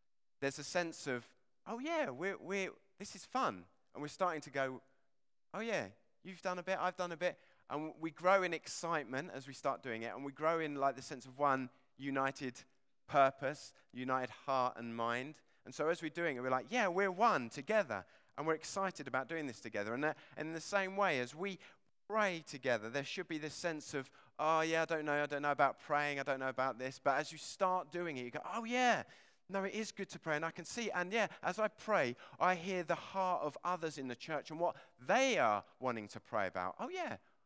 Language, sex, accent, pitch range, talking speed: English, male, British, 135-175 Hz, 235 wpm